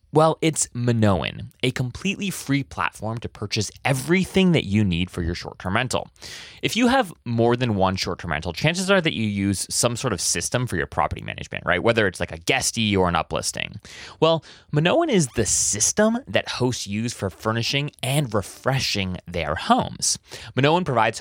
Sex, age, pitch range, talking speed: male, 30-49, 95-150 Hz, 180 wpm